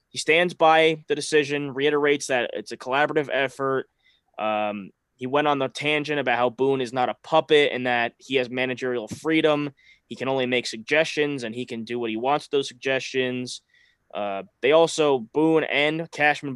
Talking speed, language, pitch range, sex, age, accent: 185 wpm, English, 120-150 Hz, male, 20-39, American